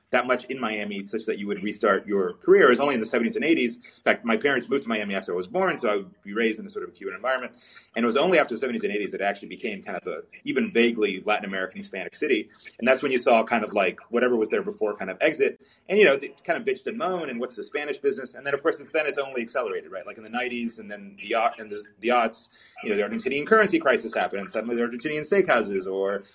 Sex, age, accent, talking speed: male, 30-49, American, 280 wpm